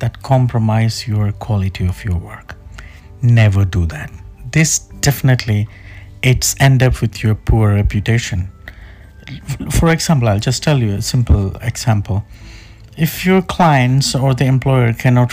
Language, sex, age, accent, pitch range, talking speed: Malayalam, male, 50-69, native, 100-130 Hz, 135 wpm